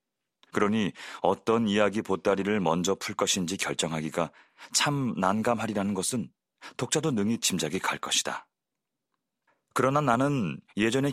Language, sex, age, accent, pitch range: Korean, male, 30-49, native, 95-120 Hz